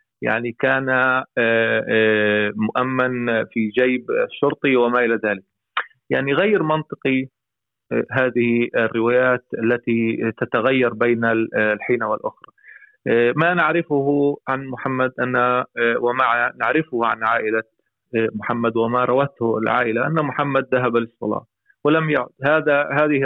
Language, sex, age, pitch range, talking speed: Arabic, male, 30-49, 115-130 Hz, 105 wpm